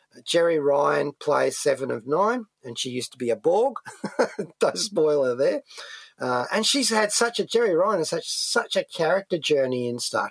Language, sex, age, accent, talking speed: English, male, 40-59, Australian, 200 wpm